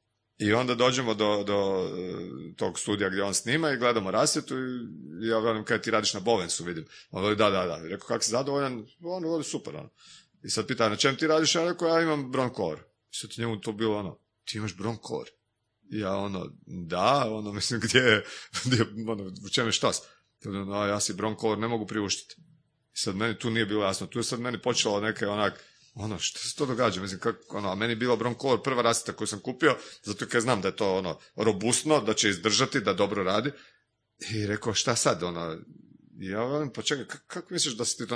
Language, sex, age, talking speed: Croatian, male, 40-59, 220 wpm